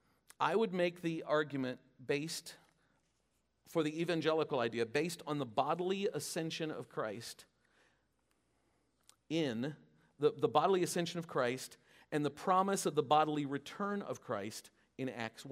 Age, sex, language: 50-69, male, English